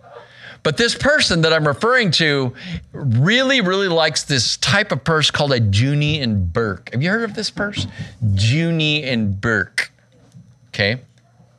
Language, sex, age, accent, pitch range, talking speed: English, male, 50-69, American, 115-155 Hz, 150 wpm